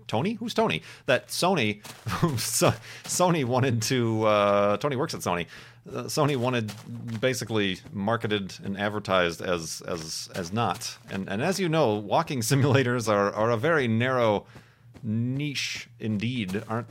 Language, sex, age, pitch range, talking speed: English, male, 30-49, 105-140 Hz, 140 wpm